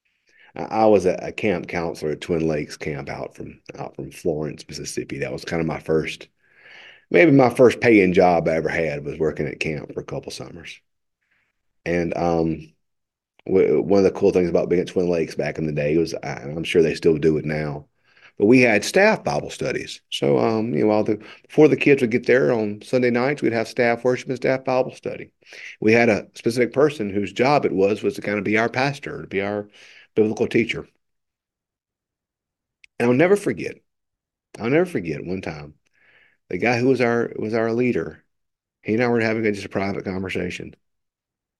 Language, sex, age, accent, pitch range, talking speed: English, male, 40-59, American, 80-115 Hz, 200 wpm